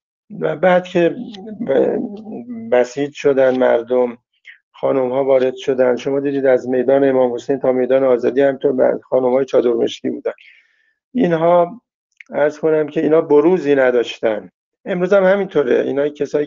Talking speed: 140 wpm